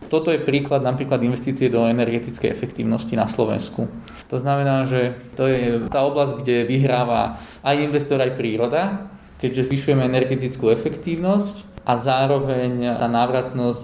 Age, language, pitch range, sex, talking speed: 20-39, Slovak, 125-140 Hz, male, 135 wpm